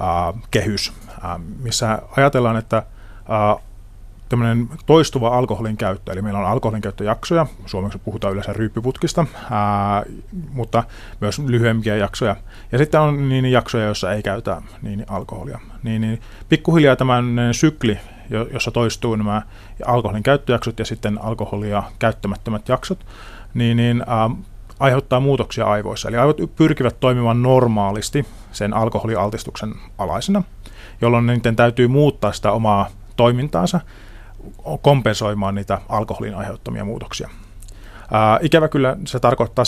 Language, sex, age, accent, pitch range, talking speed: Finnish, male, 30-49, native, 100-120 Hz, 125 wpm